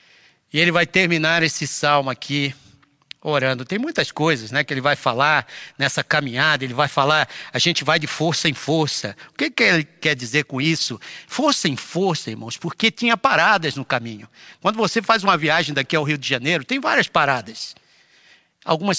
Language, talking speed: Portuguese, 185 wpm